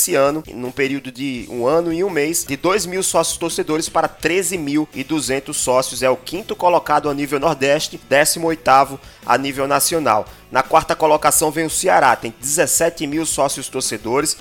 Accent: Brazilian